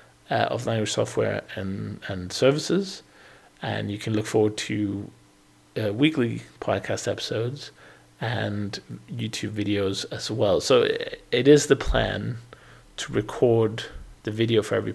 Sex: male